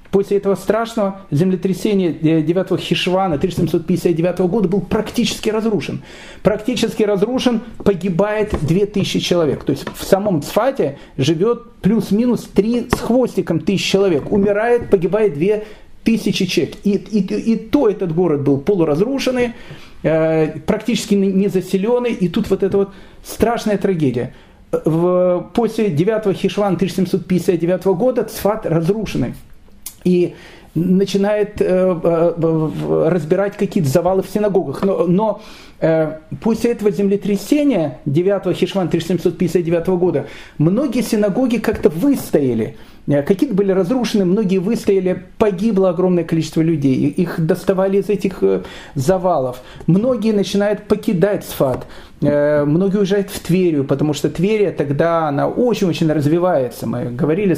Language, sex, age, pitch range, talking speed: Russian, male, 40-59, 170-210 Hz, 115 wpm